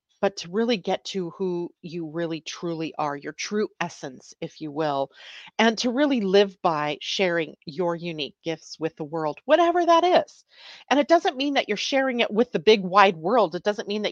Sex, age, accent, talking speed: female, 40-59, American, 205 wpm